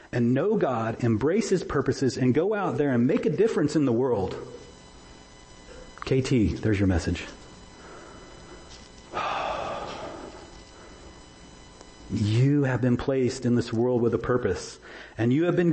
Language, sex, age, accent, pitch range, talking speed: English, male, 40-59, American, 95-125 Hz, 135 wpm